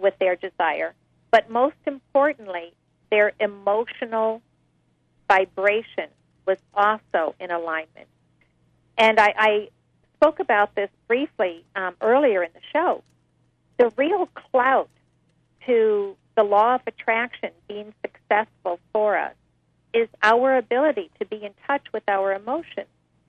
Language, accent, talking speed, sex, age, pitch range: English, American, 120 wpm, female, 50-69, 195-250 Hz